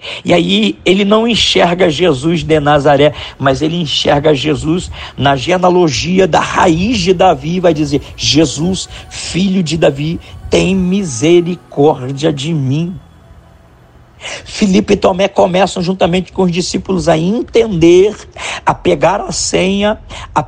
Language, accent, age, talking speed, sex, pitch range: Portuguese, Brazilian, 50-69, 125 wpm, male, 130-170 Hz